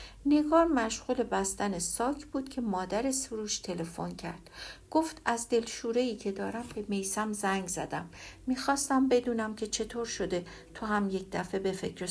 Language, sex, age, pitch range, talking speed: Persian, female, 60-79, 190-255 Hz, 150 wpm